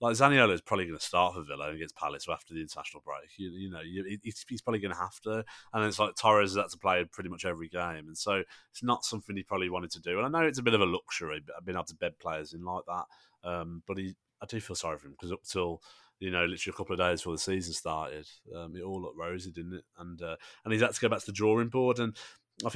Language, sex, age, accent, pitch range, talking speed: English, male, 30-49, British, 85-105 Hz, 290 wpm